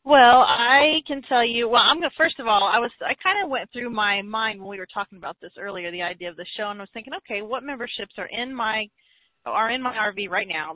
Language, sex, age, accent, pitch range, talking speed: English, female, 30-49, American, 180-210 Hz, 275 wpm